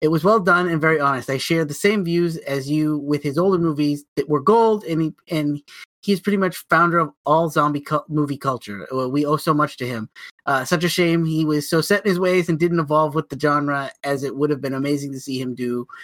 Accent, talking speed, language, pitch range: American, 250 wpm, English, 135-175 Hz